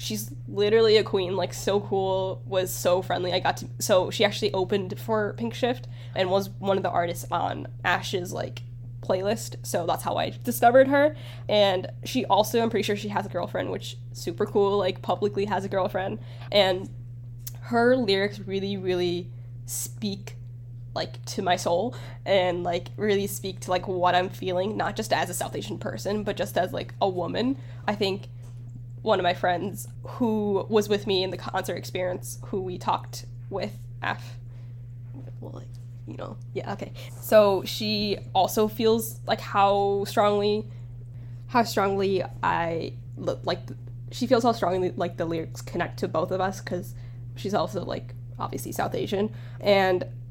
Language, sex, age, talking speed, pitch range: English, female, 10-29, 170 wpm, 120-190 Hz